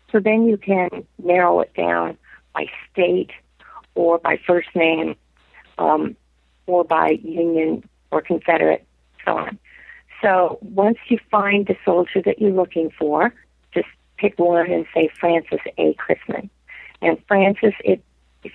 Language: English